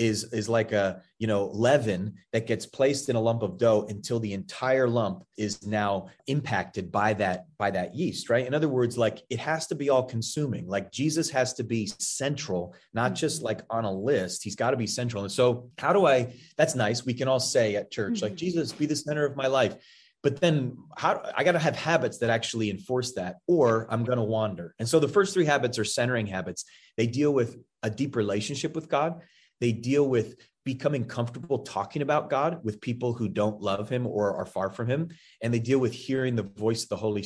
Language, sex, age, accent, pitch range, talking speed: English, male, 30-49, American, 105-135 Hz, 220 wpm